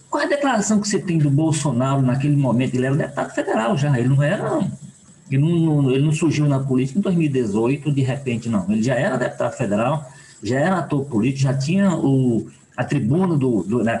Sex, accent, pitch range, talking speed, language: male, Brazilian, 135-175 Hz, 190 wpm, Portuguese